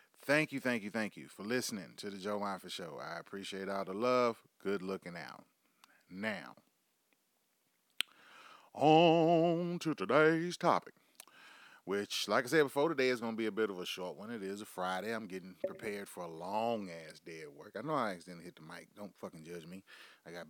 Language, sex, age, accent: English, male, 30-49, American